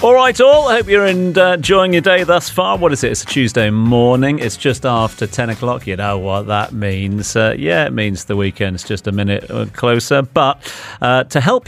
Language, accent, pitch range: English, British, 105-145 Hz